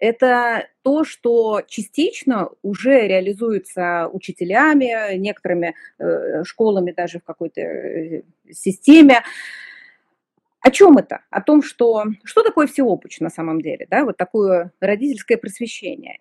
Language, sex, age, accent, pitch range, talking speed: Russian, female, 30-49, native, 200-285 Hz, 105 wpm